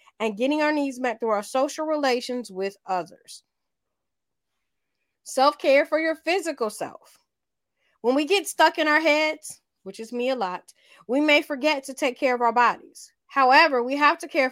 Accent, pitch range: American, 215-290 Hz